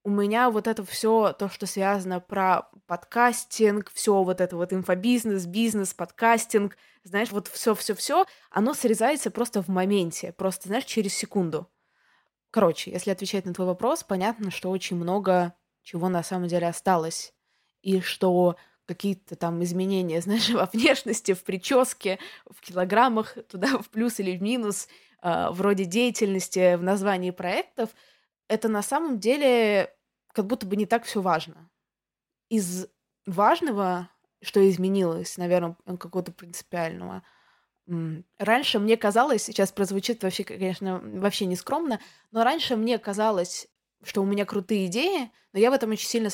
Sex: female